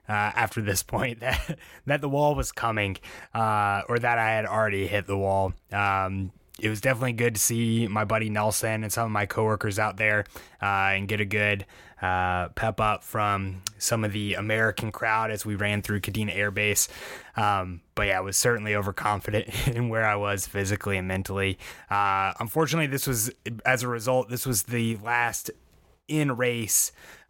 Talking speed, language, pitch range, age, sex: 185 wpm, English, 100-120 Hz, 20-39, male